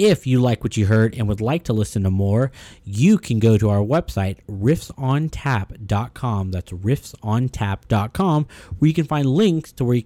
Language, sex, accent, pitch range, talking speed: English, male, American, 100-130 Hz, 180 wpm